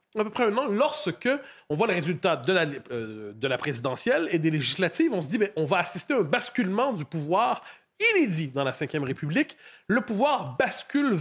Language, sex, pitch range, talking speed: French, male, 170-235 Hz, 205 wpm